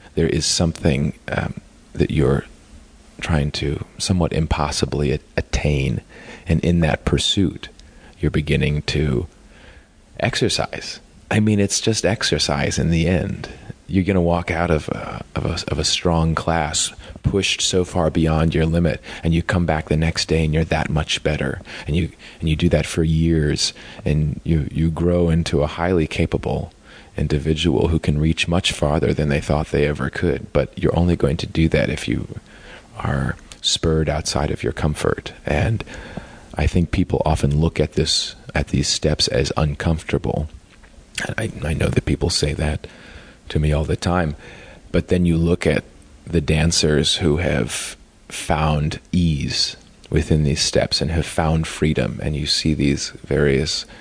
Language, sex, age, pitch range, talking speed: English, male, 30-49, 75-85 Hz, 165 wpm